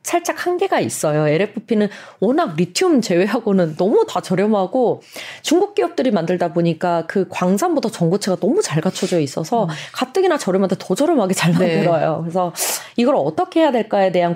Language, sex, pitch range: Korean, female, 170-250 Hz